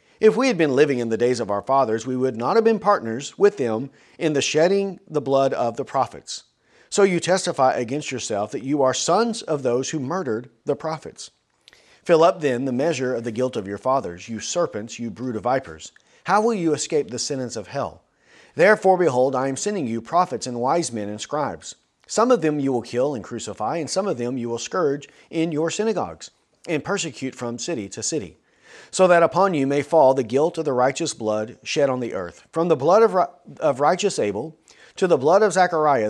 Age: 40-59